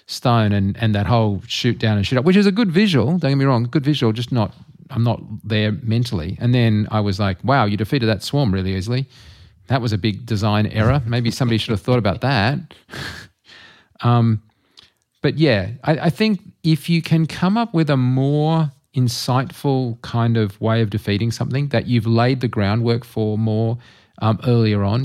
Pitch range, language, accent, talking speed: 100-125 Hz, English, Australian, 200 wpm